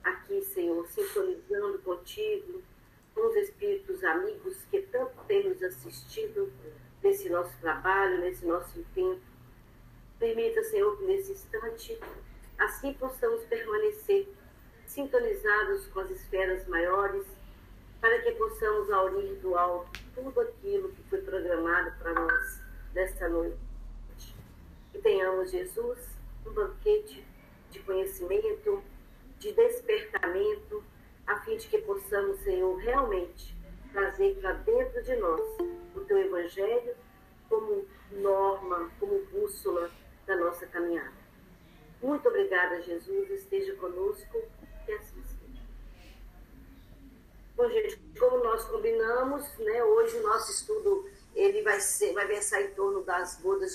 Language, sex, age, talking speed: Portuguese, female, 50-69, 115 wpm